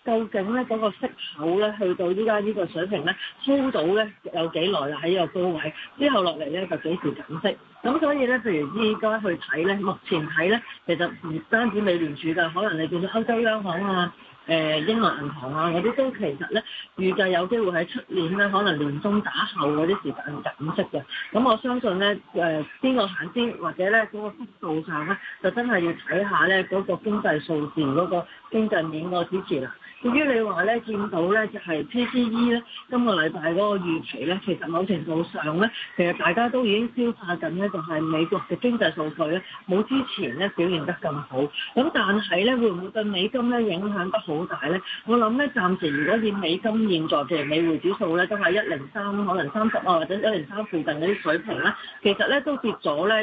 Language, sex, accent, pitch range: Chinese, female, native, 170-225 Hz